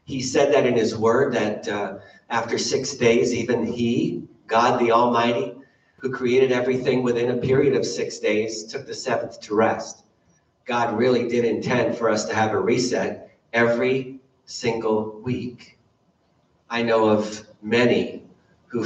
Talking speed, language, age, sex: 155 wpm, English, 40-59, male